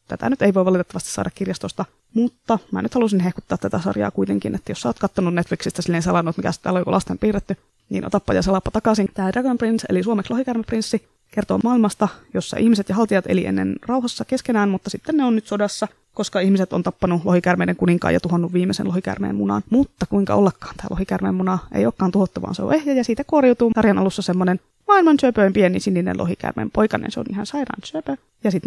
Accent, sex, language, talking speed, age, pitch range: native, female, Finnish, 205 wpm, 20-39, 175-220 Hz